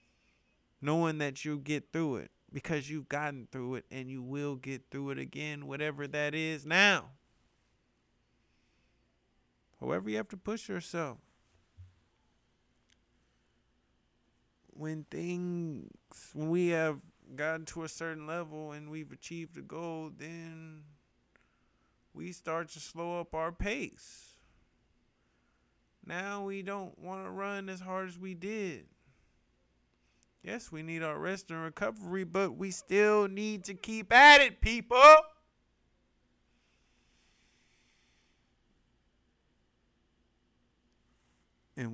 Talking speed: 115 wpm